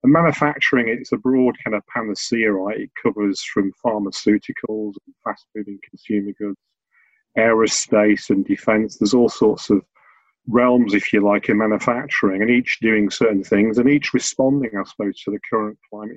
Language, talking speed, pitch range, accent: English, 165 wpm, 105-125 Hz, British